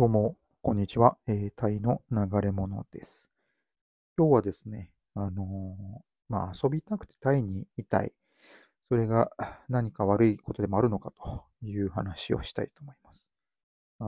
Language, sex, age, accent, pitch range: Japanese, male, 40-59, native, 105-145 Hz